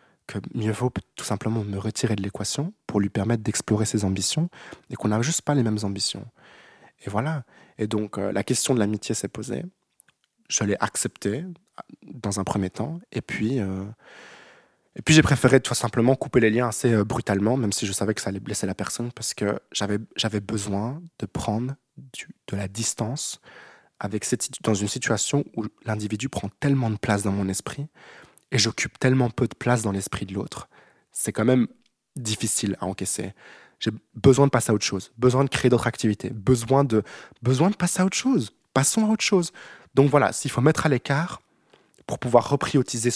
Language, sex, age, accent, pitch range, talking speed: French, male, 20-39, French, 105-135 Hz, 195 wpm